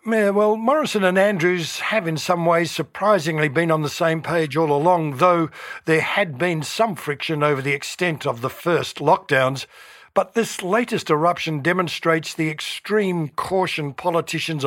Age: 60-79